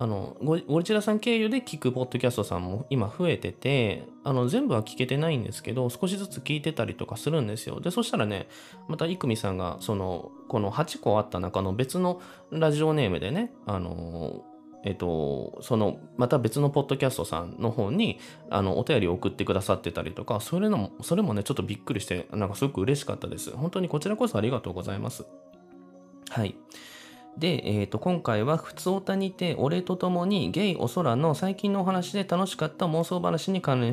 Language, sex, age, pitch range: Japanese, male, 20-39, 105-160 Hz